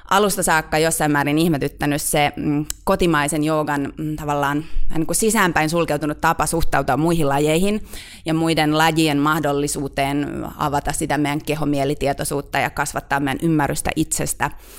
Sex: female